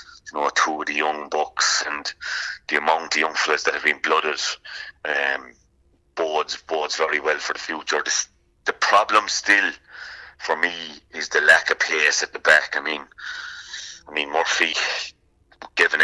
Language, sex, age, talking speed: English, male, 30-49, 175 wpm